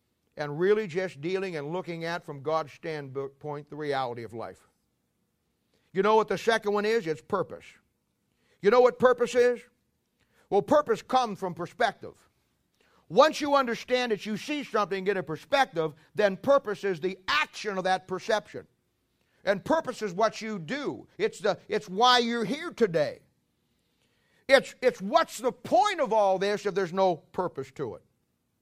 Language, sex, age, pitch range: English, male, 50-69, 165-225 Hz